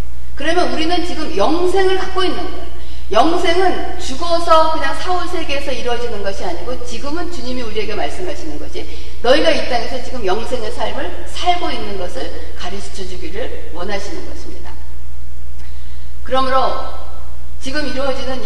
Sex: female